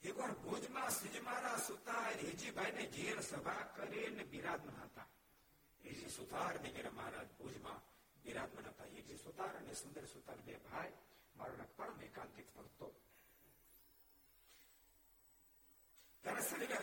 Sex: male